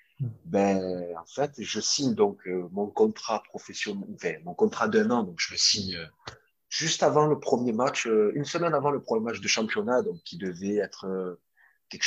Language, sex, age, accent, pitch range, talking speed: English, male, 30-49, French, 95-155 Hz, 195 wpm